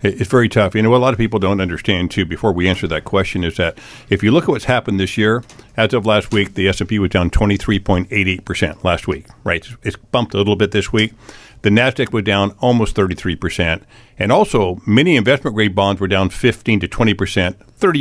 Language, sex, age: English, male, 50-69